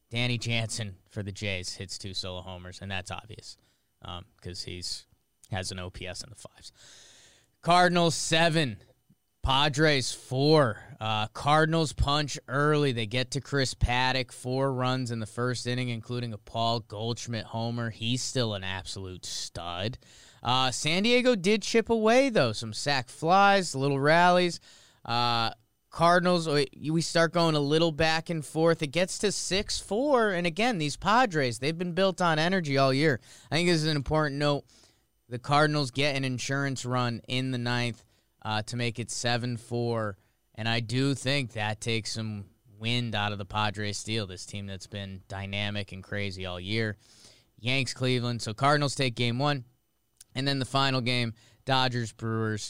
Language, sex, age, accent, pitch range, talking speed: English, male, 20-39, American, 110-145 Hz, 165 wpm